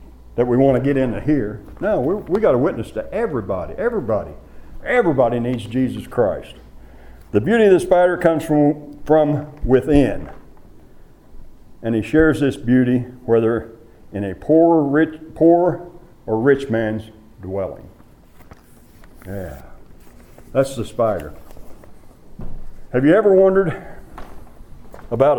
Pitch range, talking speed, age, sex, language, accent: 105-155 Hz, 125 wpm, 60-79, male, English, American